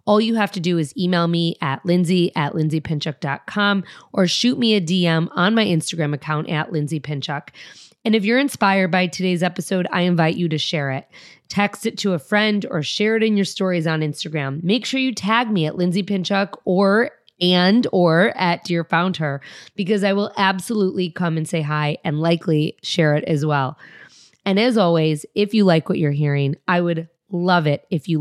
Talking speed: 195 wpm